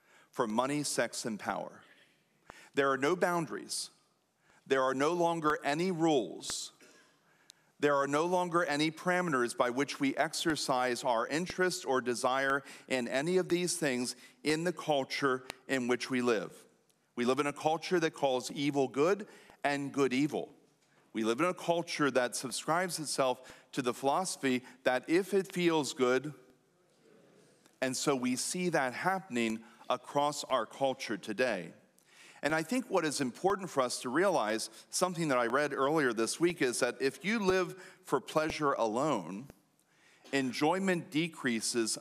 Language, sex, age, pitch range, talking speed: English, male, 40-59, 130-170 Hz, 150 wpm